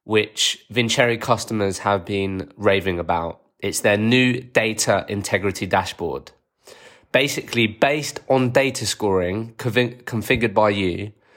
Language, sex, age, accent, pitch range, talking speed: English, male, 20-39, British, 100-115 Hz, 110 wpm